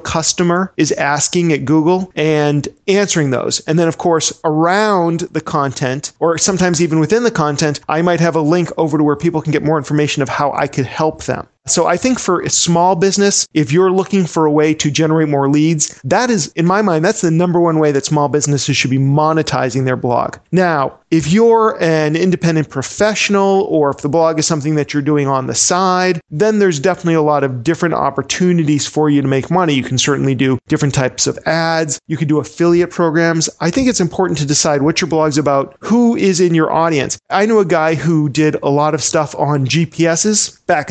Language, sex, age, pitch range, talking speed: English, male, 40-59, 150-180 Hz, 215 wpm